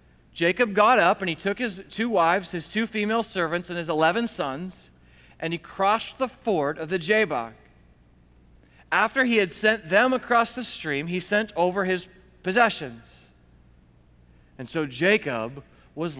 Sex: male